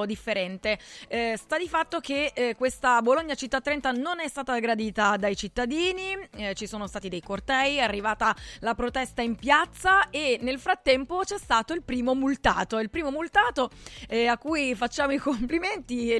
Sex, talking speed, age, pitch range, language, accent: female, 175 wpm, 20-39, 220-280 Hz, Italian, native